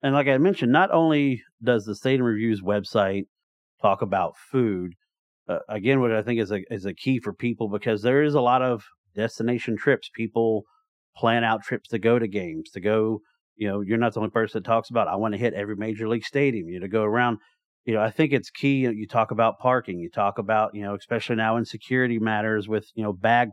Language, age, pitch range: English, 40-59, 110-130 Hz